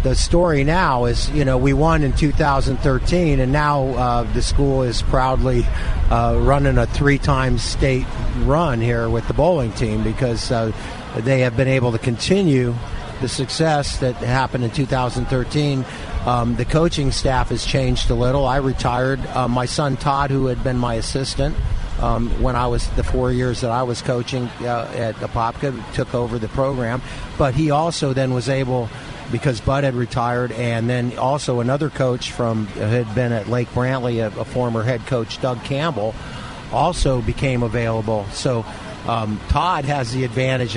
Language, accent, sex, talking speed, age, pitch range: English, American, male, 170 wpm, 50-69, 115-135 Hz